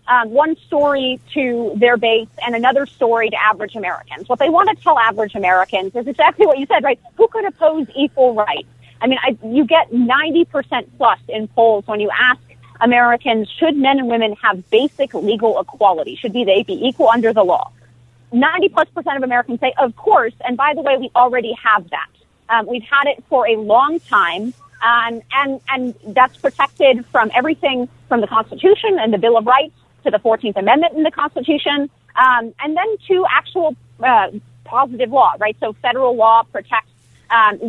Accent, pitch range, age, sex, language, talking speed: American, 220-290 Hz, 30-49, female, English, 190 wpm